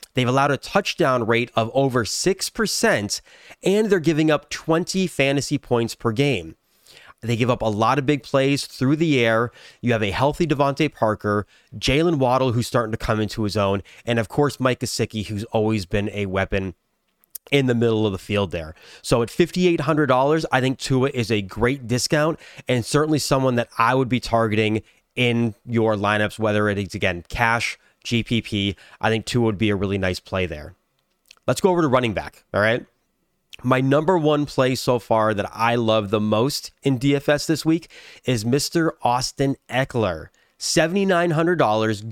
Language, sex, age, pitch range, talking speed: English, male, 30-49, 110-145 Hz, 180 wpm